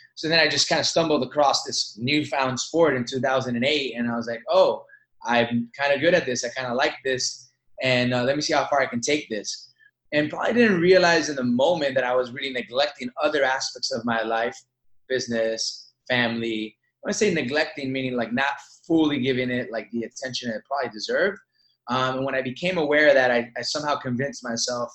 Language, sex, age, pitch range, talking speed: English, male, 20-39, 125-150 Hz, 210 wpm